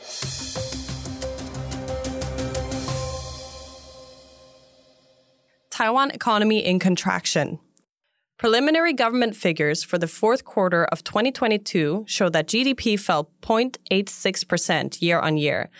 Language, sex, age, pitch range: English, female, 20-39, 160-220 Hz